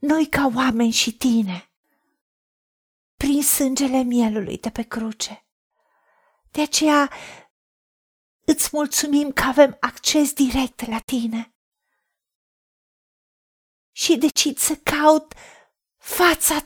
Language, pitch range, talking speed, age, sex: Romanian, 245-305 Hz, 95 wpm, 40-59, female